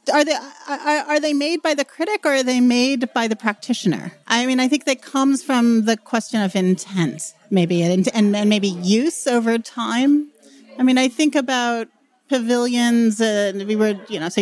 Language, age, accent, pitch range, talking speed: English, 30-49, American, 190-245 Hz, 185 wpm